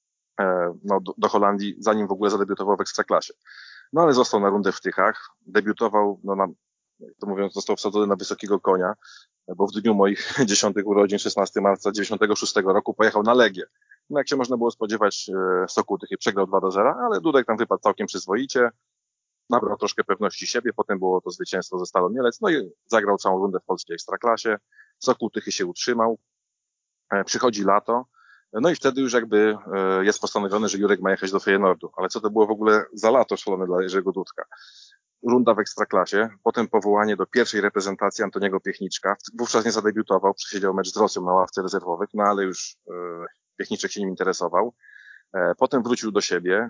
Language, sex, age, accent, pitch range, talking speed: Polish, male, 20-39, native, 95-115 Hz, 175 wpm